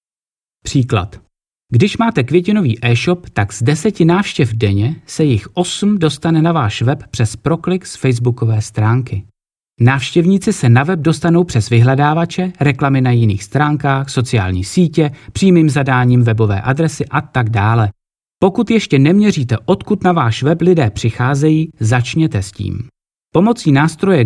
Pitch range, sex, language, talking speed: 110-165 Hz, male, Czech, 135 wpm